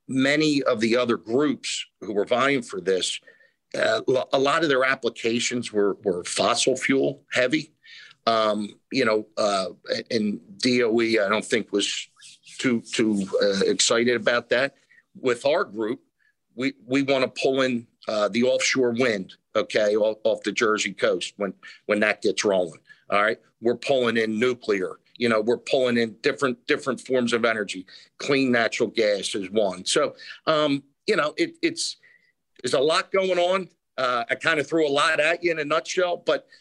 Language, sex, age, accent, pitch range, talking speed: English, male, 50-69, American, 120-160 Hz, 170 wpm